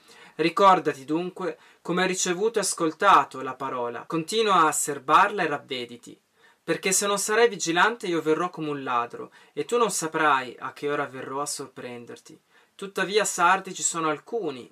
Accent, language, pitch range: native, Italian, 140-175 Hz